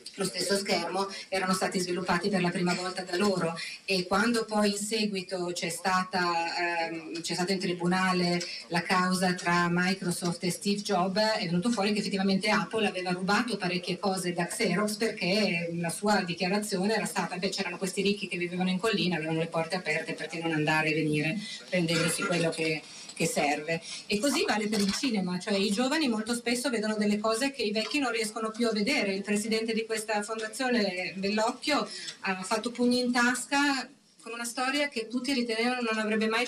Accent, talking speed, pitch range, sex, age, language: native, 185 wpm, 190-225 Hz, female, 30-49, Italian